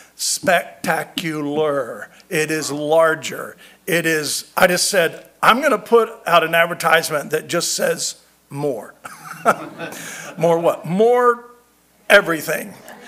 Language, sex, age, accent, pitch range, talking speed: English, male, 50-69, American, 160-225 Hz, 110 wpm